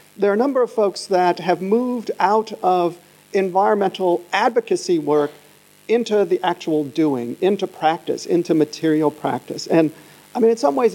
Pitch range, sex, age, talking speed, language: 155-200 Hz, male, 50-69, 160 wpm, English